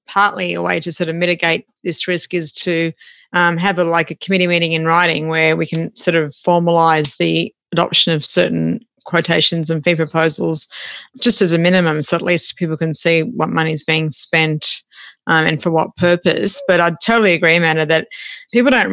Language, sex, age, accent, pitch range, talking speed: English, female, 30-49, Australian, 160-180 Hz, 195 wpm